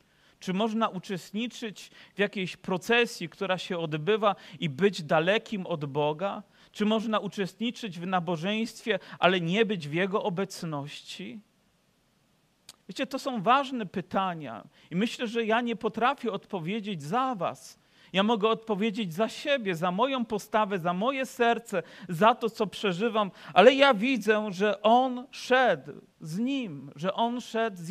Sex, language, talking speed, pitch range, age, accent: male, Polish, 140 wpm, 190-235 Hz, 40-59, native